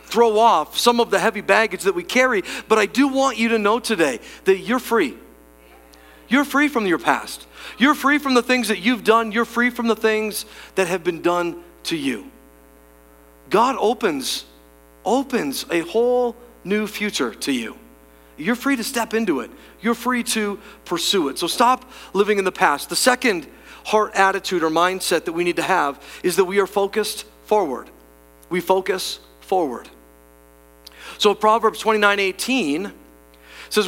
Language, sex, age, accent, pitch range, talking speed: English, male, 40-59, American, 165-235 Hz, 170 wpm